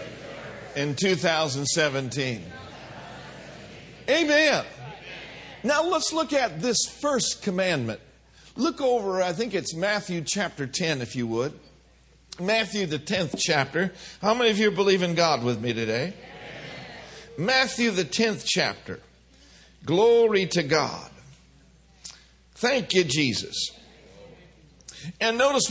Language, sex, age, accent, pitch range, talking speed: English, male, 50-69, American, 145-215 Hz, 110 wpm